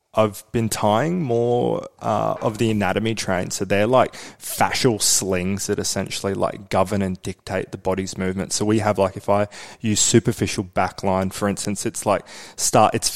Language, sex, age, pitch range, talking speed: English, male, 20-39, 100-110 Hz, 180 wpm